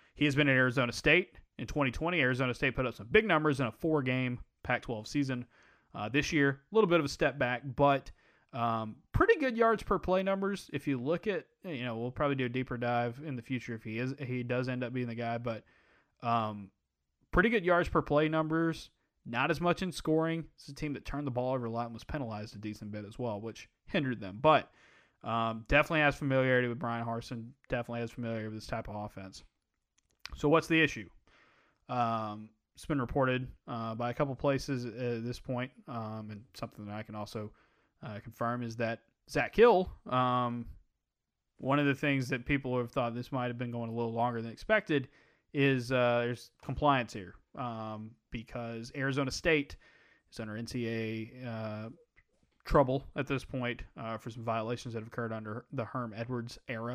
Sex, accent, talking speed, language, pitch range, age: male, American, 200 wpm, English, 115-140 Hz, 20-39